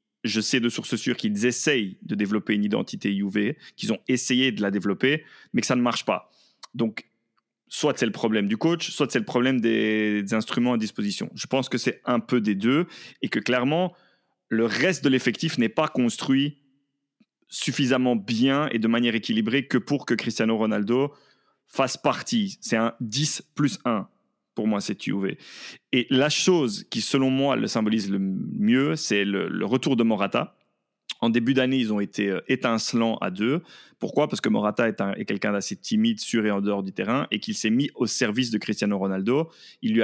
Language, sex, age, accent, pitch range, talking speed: French, male, 30-49, French, 110-145 Hz, 200 wpm